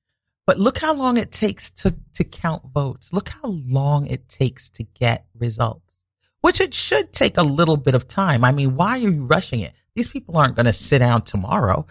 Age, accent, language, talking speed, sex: 40-59, American, English, 210 wpm, male